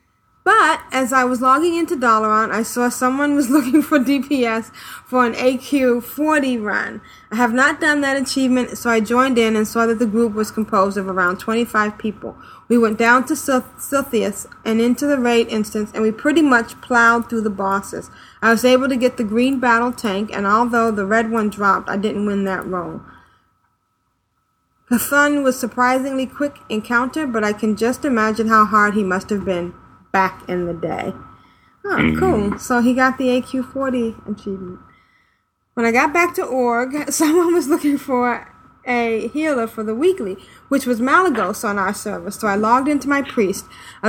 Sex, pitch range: female, 215-265 Hz